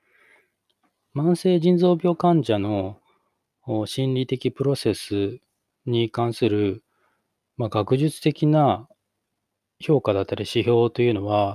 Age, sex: 20-39, male